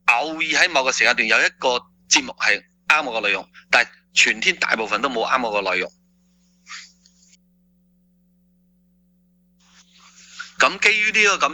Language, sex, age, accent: Chinese, male, 30-49, native